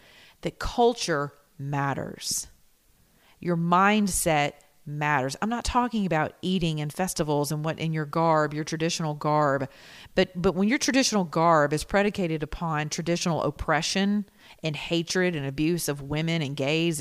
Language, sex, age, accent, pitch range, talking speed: English, female, 40-59, American, 150-190 Hz, 140 wpm